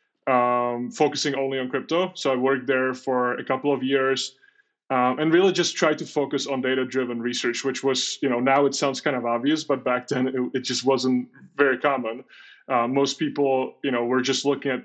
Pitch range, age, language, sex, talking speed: 125-145 Hz, 20-39, English, male, 210 wpm